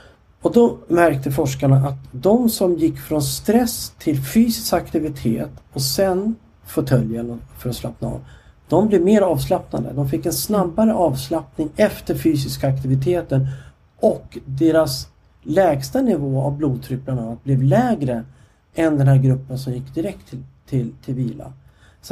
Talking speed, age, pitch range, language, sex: 140 wpm, 50-69, 130-165 Hz, English, male